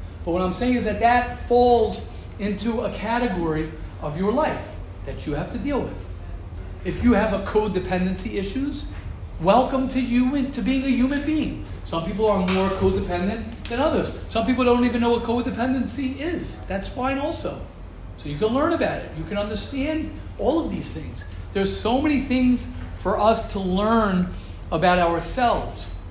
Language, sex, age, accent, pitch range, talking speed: English, male, 40-59, American, 165-240 Hz, 170 wpm